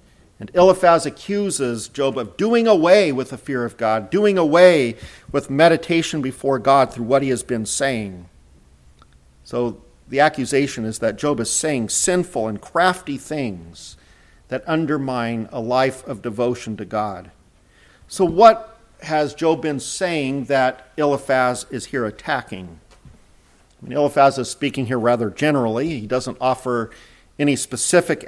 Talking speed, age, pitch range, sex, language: 145 wpm, 50-69, 115-145 Hz, male, English